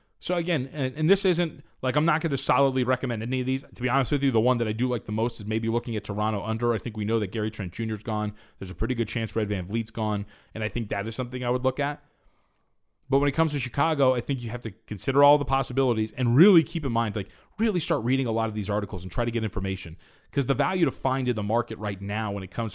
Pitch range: 105-135 Hz